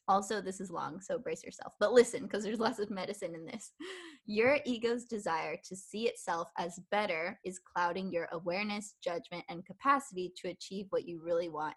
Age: 20-39